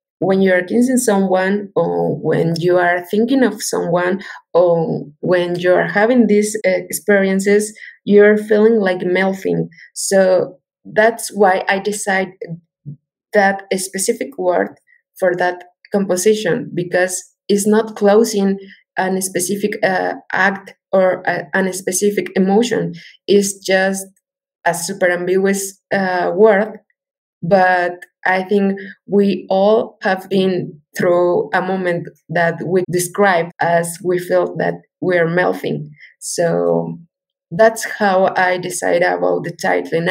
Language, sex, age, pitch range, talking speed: English, female, 20-39, 180-215 Hz, 120 wpm